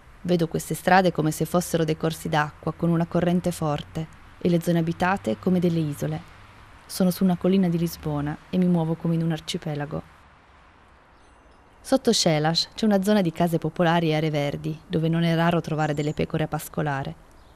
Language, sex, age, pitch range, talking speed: Italian, female, 20-39, 155-185 Hz, 180 wpm